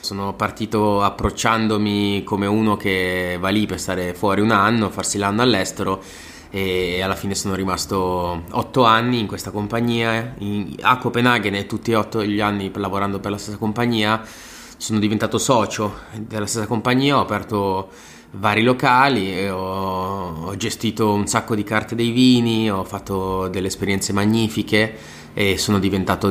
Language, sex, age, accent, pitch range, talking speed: Italian, male, 20-39, native, 95-110 Hz, 150 wpm